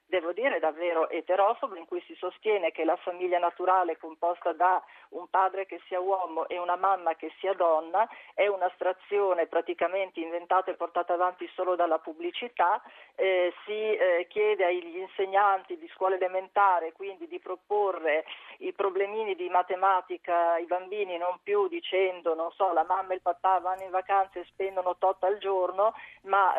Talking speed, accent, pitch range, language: 160 wpm, native, 175-215 Hz, Italian